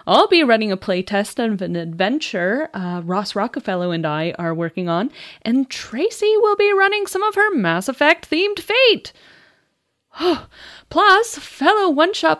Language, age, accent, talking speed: English, 30-49, American, 160 wpm